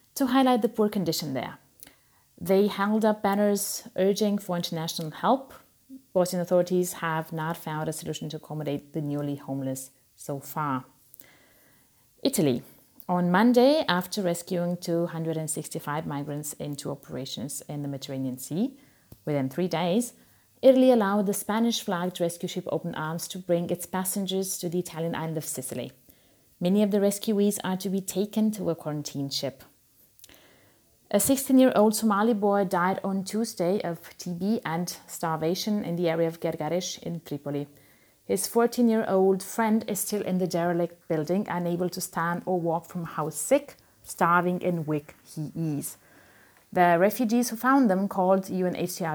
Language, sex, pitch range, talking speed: English, female, 160-205 Hz, 150 wpm